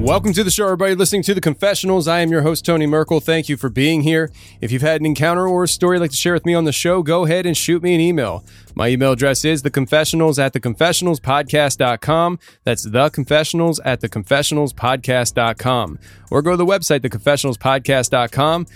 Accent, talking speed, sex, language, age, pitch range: American, 210 wpm, male, English, 20-39, 130-160 Hz